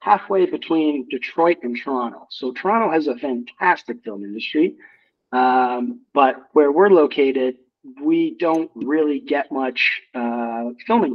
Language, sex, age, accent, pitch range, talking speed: English, male, 40-59, American, 125-155 Hz, 130 wpm